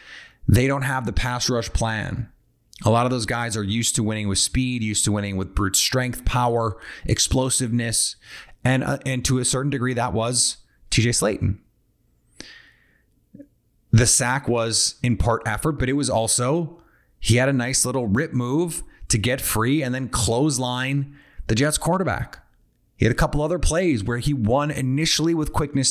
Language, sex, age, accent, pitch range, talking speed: English, male, 30-49, American, 110-130 Hz, 175 wpm